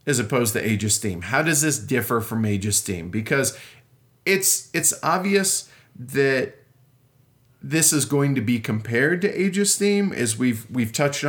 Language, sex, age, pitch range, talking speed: English, male, 40-59, 120-155 Hz, 175 wpm